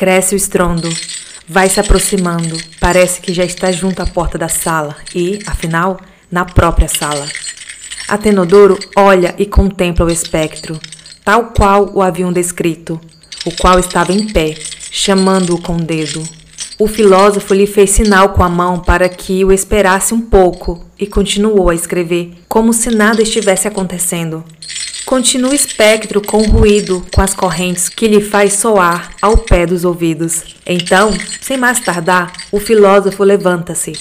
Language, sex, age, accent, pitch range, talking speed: Portuguese, female, 20-39, Brazilian, 175-205 Hz, 150 wpm